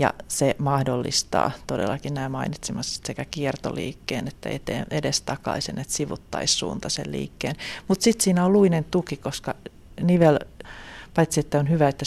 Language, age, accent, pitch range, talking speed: Finnish, 40-59, native, 130-155 Hz, 135 wpm